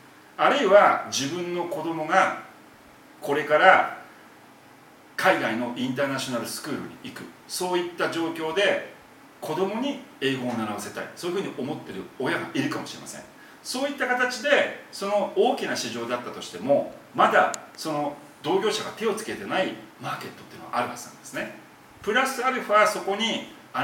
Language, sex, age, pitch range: Japanese, male, 40-59, 155-255 Hz